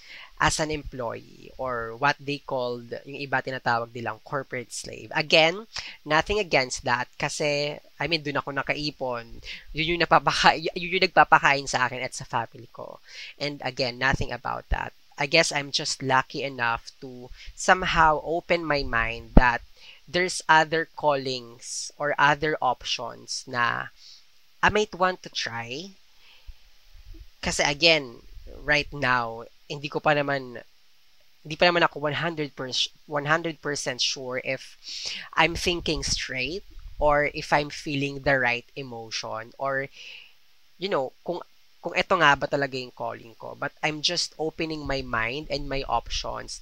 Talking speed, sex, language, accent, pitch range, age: 140 wpm, female, Filipino, native, 125-155 Hz, 20-39